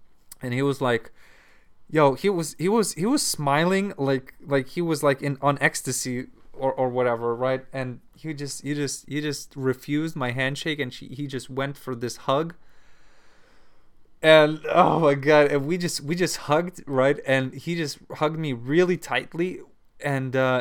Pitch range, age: 140-170 Hz, 20-39